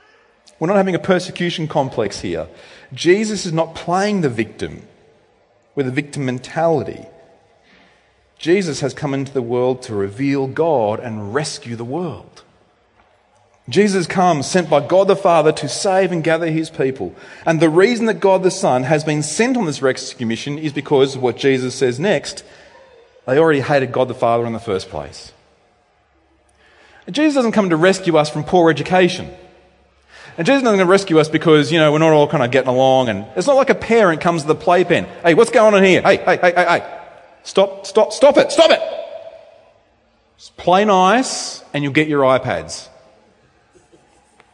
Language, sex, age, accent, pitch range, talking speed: English, male, 40-59, Australian, 140-195 Hz, 180 wpm